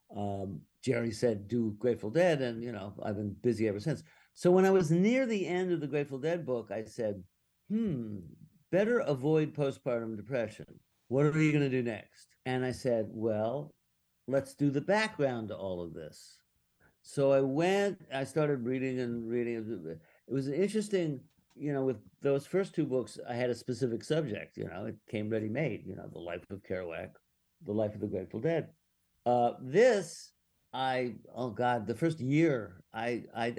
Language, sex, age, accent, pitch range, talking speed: English, male, 50-69, American, 110-150 Hz, 185 wpm